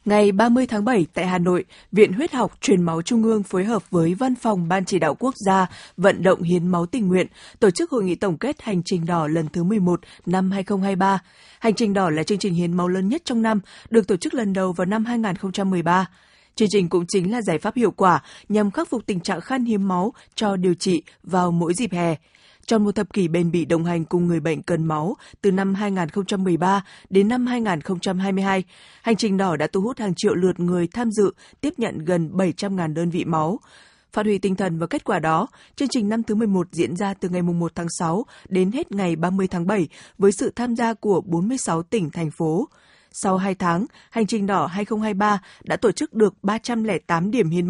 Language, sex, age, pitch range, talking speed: Vietnamese, female, 20-39, 175-215 Hz, 220 wpm